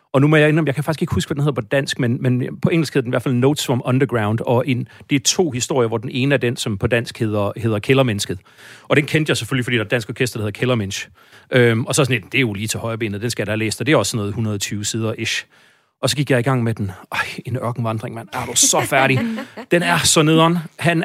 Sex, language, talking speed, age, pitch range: male, Danish, 290 wpm, 30-49, 110-145 Hz